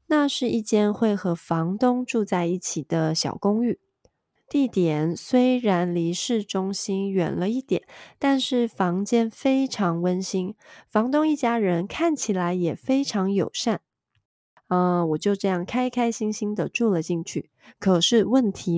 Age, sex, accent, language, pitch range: 20-39, female, native, Chinese, 180-235 Hz